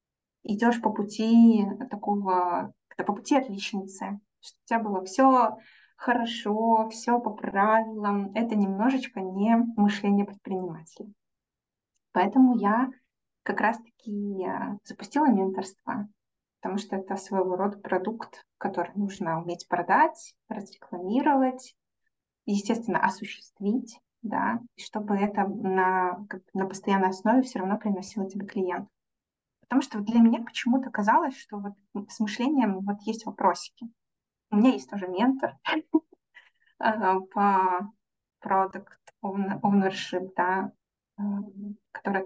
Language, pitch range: English, 195-230 Hz